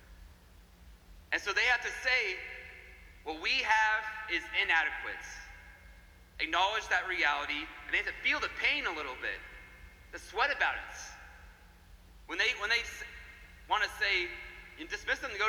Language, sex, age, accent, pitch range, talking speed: English, male, 30-49, American, 75-90 Hz, 150 wpm